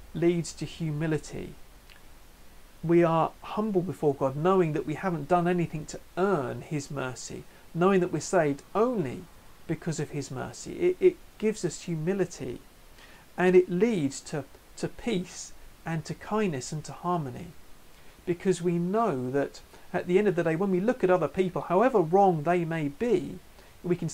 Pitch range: 150-185 Hz